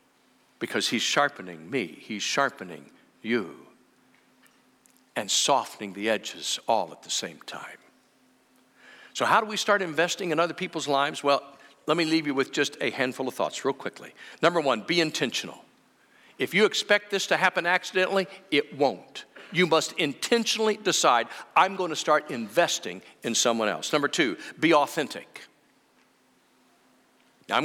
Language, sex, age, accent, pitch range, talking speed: English, male, 60-79, American, 155-215 Hz, 150 wpm